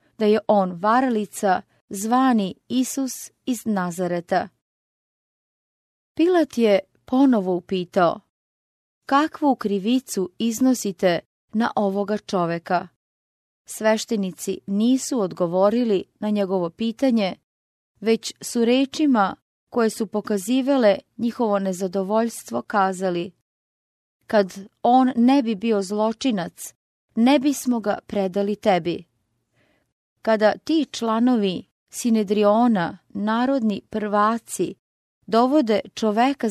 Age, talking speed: 30-49, 85 wpm